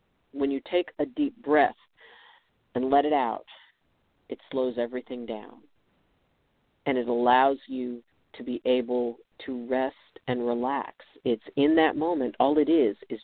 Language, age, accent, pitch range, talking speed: English, 40-59, American, 125-145 Hz, 150 wpm